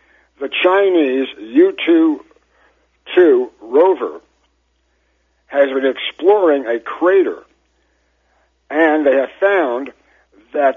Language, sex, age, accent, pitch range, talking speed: English, male, 60-79, American, 130-200 Hz, 80 wpm